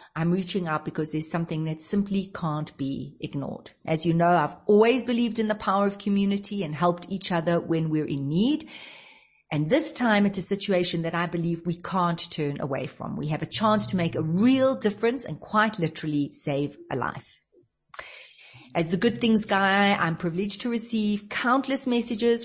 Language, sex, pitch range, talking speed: English, female, 160-210 Hz, 185 wpm